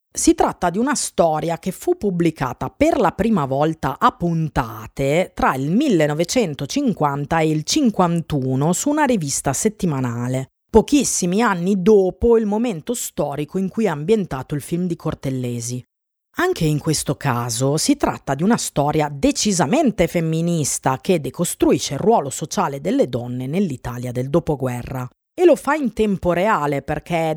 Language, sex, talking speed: Italian, female, 145 wpm